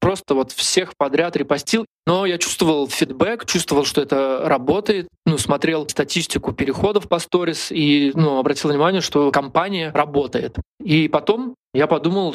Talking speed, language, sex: 145 wpm, Russian, male